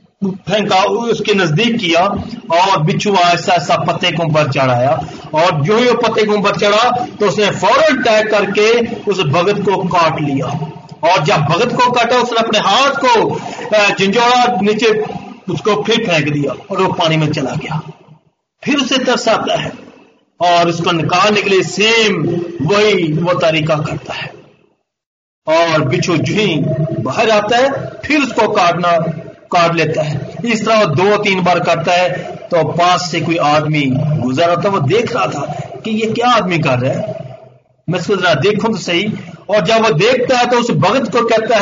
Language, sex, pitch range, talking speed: Hindi, male, 170-235 Hz, 175 wpm